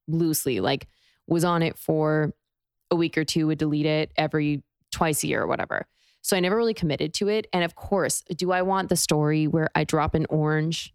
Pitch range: 155-180 Hz